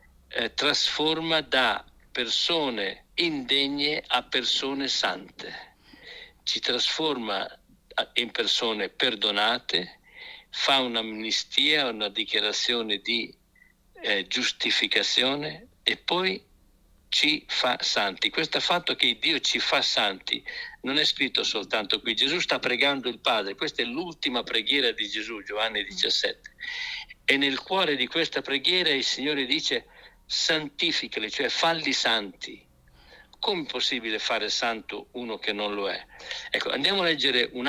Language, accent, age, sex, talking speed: Italian, native, 60-79, male, 125 wpm